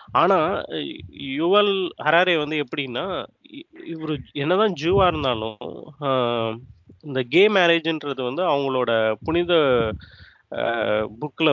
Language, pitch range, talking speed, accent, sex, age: Tamil, 125-165 Hz, 90 wpm, native, male, 30-49